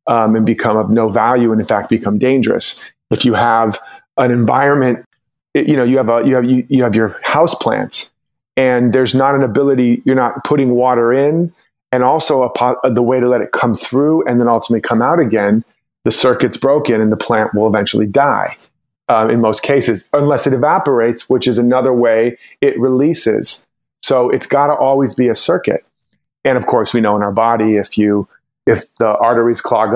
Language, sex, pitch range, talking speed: English, male, 115-135 Hz, 200 wpm